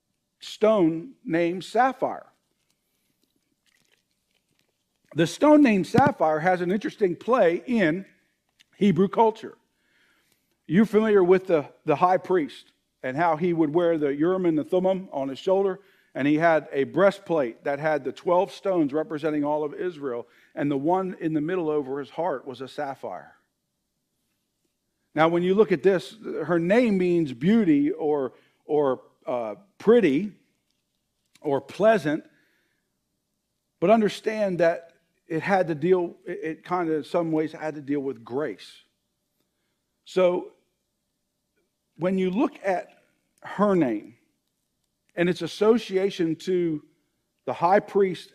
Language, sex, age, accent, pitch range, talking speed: English, male, 50-69, American, 155-205 Hz, 135 wpm